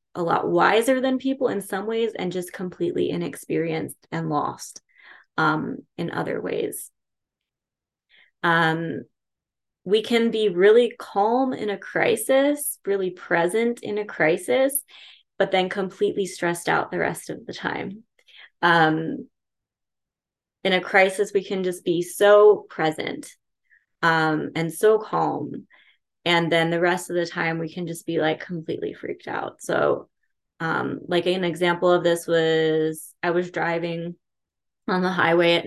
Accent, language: American, English